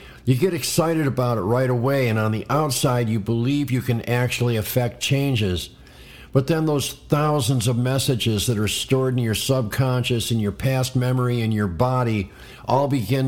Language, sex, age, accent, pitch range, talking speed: English, male, 50-69, American, 110-135 Hz, 175 wpm